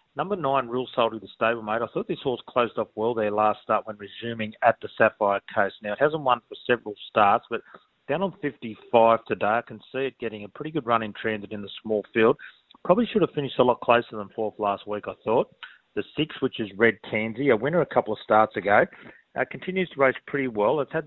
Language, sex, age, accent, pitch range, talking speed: English, male, 30-49, Australian, 105-125 Hz, 240 wpm